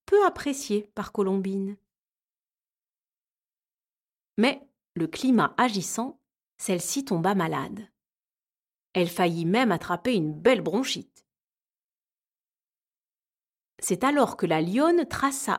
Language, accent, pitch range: French, French, 195-255 Hz